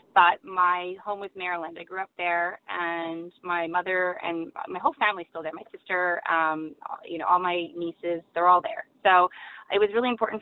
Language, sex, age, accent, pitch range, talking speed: English, female, 20-39, American, 170-190 Hz, 200 wpm